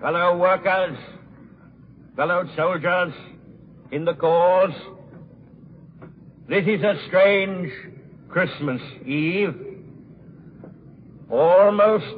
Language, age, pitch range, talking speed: English, 60-79, 155-195 Hz, 70 wpm